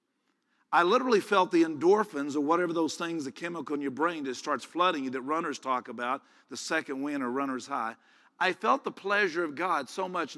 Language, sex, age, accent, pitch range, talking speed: English, male, 50-69, American, 145-225 Hz, 210 wpm